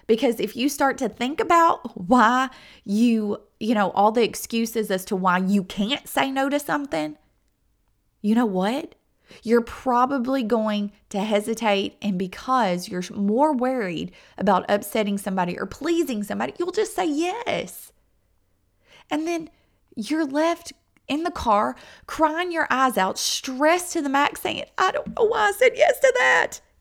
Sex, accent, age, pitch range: female, American, 30-49, 180-270 Hz